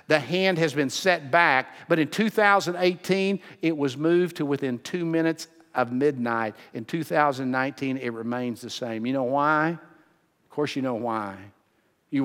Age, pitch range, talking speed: 50-69, 140-205 Hz, 160 wpm